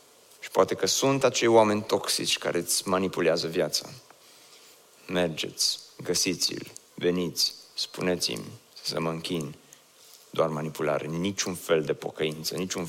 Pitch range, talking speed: 90-145 Hz, 115 wpm